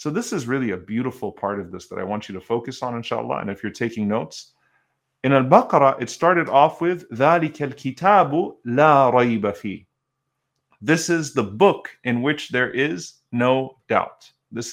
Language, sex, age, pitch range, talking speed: English, male, 30-49, 115-150 Hz, 165 wpm